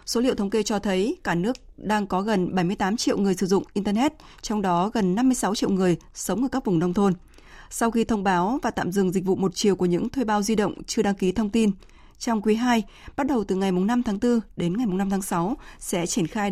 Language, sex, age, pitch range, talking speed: Vietnamese, female, 20-39, 190-235 Hz, 250 wpm